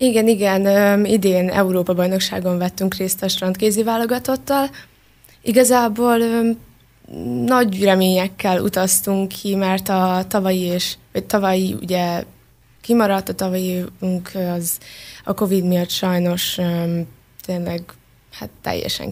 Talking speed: 105 wpm